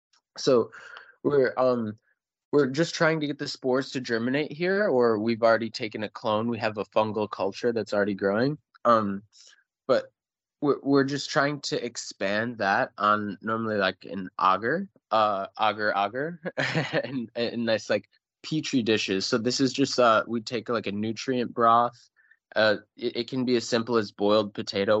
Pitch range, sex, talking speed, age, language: 110-140 Hz, male, 170 wpm, 20-39, English